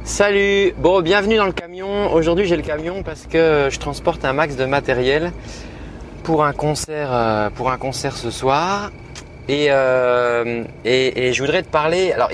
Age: 30-49